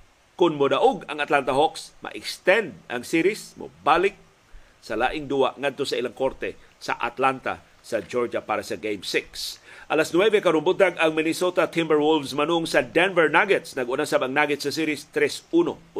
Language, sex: Filipino, male